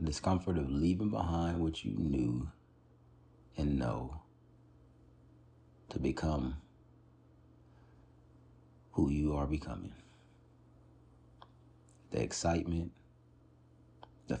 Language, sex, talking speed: English, male, 80 wpm